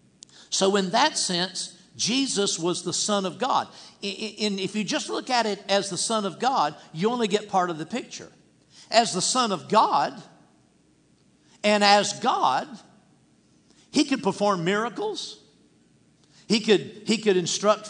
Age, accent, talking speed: 50-69, American, 150 wpm